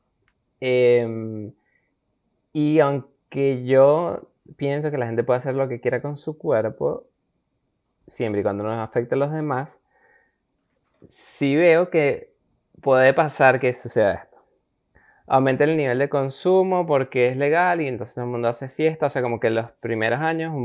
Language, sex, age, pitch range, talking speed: Spanish, male, 20-39, 120-150 Hz, 155 wpm